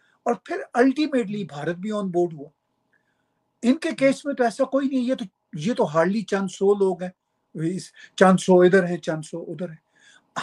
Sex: male